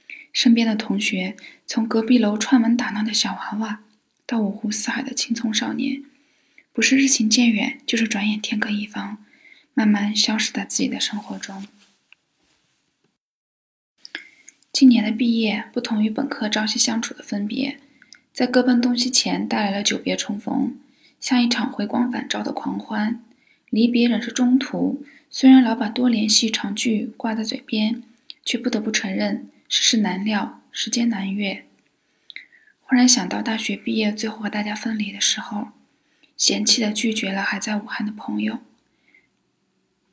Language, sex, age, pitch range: Chinese, female, 20-39, 215-250 Hz